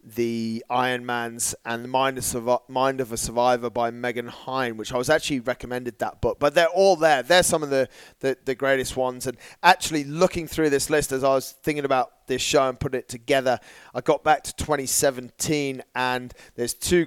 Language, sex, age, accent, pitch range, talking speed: English, male, 30-49, British, 125-150 Hz, 205 wpm